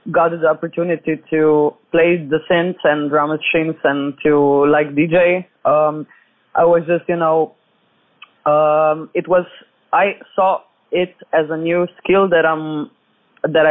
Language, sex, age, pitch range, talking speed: French, female, 20-39, 155-180 Hz, 145 wpm